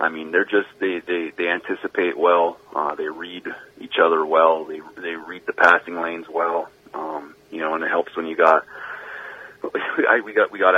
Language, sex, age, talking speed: English, male, 30-49, 180 wpm